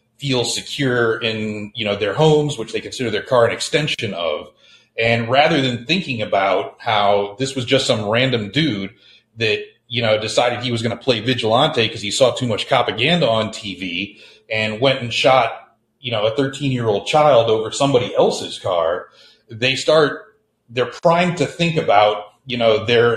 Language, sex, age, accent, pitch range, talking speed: English, male, 30-49, American, 110-140 Hz, 175 wpm